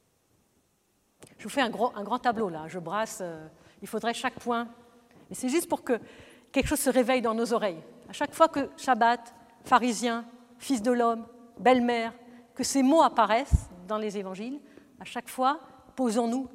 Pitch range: 215-255 Hz